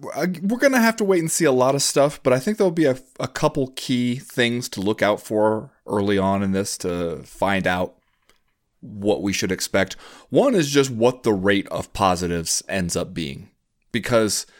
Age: 30-49